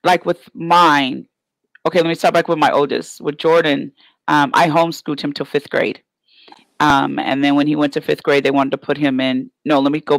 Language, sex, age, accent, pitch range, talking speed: English, female, 40-59, American, 145-185 Hz, 230 wpm